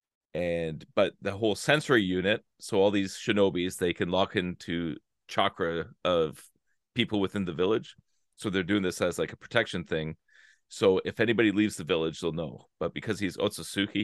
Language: English